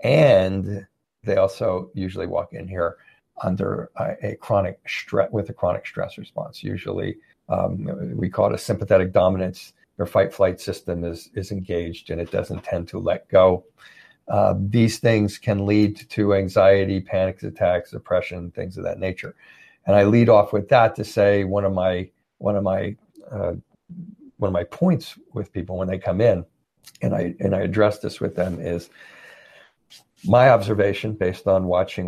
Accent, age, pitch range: American, 50-69, 90-105 Hz